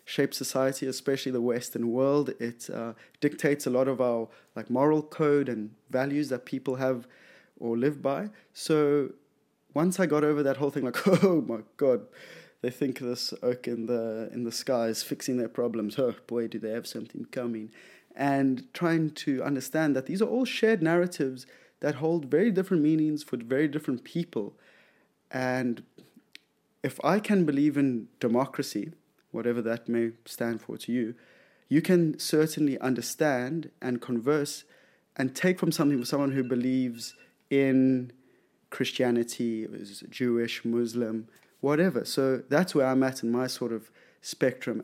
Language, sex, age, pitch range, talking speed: English, male, 20-39, 120-155 Hz, 160 wpm